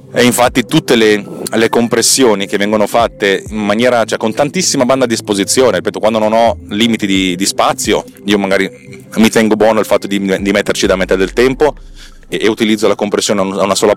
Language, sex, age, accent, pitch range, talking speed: Italian, male, 30-49, native, 95-115 Hz, 200 wpm